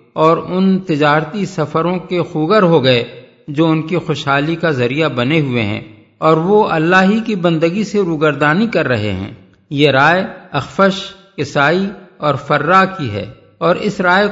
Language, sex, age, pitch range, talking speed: Urdu, male, 50-69, 150-190 Hz, 165 wpm